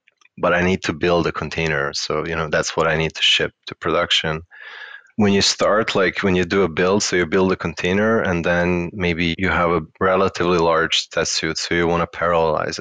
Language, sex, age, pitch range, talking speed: English, male, 20-39, 80-95 Hz, 220 wpm